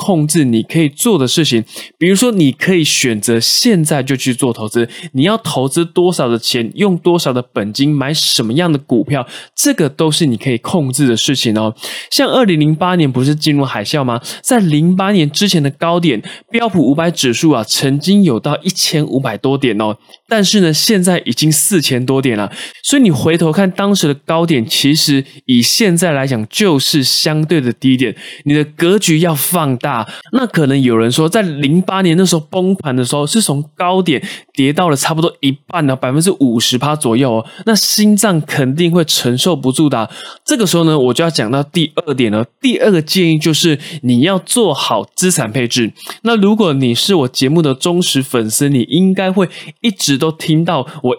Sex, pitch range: male, 130-180 Hz